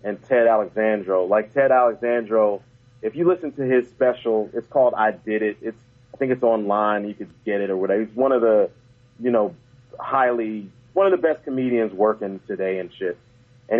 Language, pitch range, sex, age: English, 115-150 Hz, male, 30-49